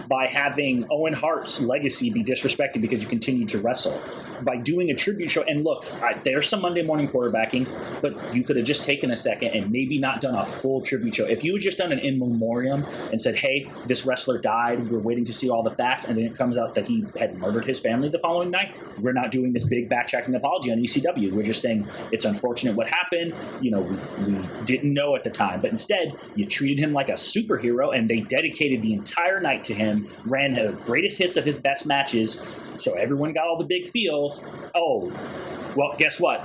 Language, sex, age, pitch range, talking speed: English, male, 30-49, 115-170 Hz, 220 wpm